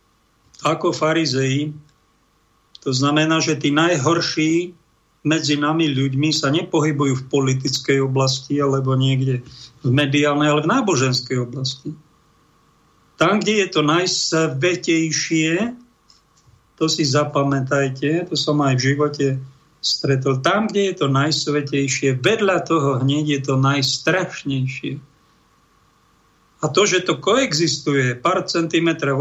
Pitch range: 140-170 Hz